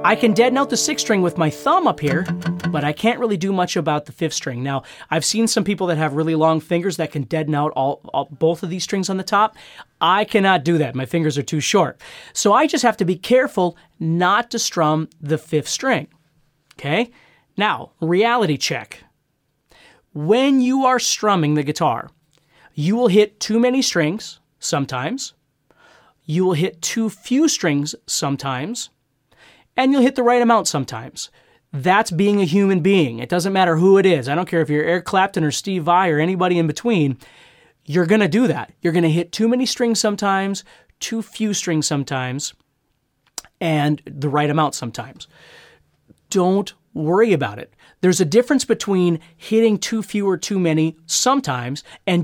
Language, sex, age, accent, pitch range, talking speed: English, male, 30-49, American, 150-215 Hz, 185 wpm